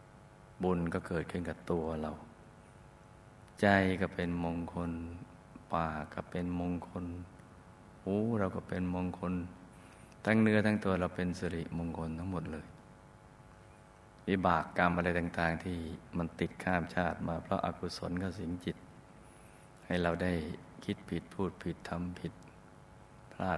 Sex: male